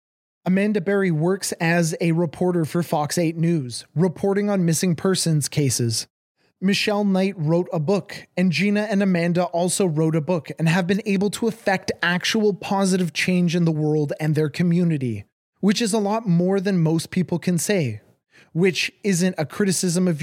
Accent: American